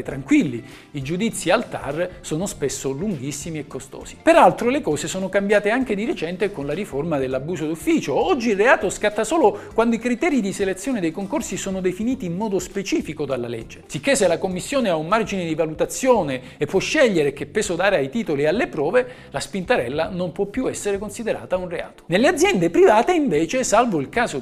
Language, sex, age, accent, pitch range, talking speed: Italian, male, 50-69, native, 145-240 Hz, 190 wpm